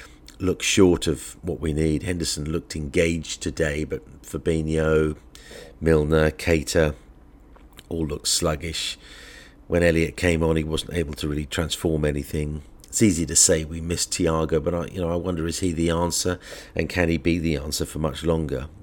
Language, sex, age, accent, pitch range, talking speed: English, male, 50-69, British, 75-85 Hz, 170 wpm